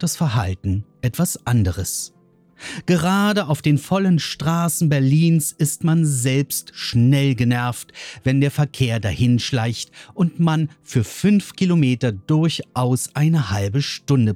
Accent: German